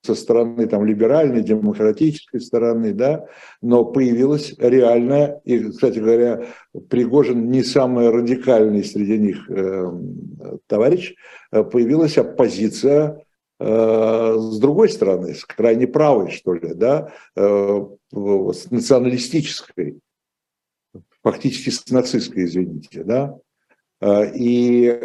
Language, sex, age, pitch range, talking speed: Russian, male, 60-79, 110-145 Hz, 105 wpm